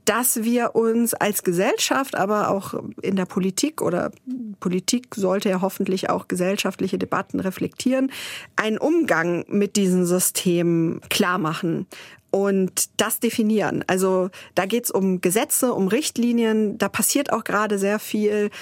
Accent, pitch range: German, 190-230 Hz